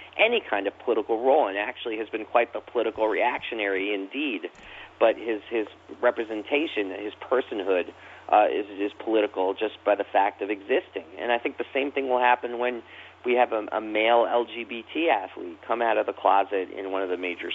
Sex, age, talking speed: male, 40-59, 190 wpm